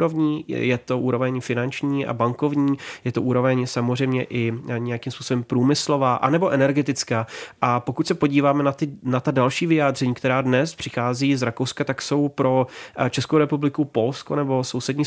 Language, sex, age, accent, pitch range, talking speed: Czech, male, 30-49, native, 125-140 Hz, 150 wpm